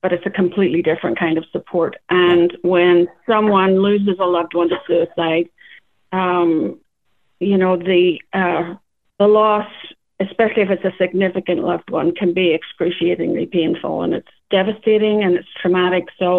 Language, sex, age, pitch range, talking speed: English, female, 50-69, 180-200 Hz, 155 wpm